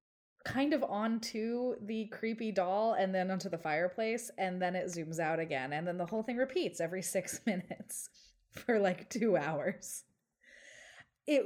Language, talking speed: English, 160 wpm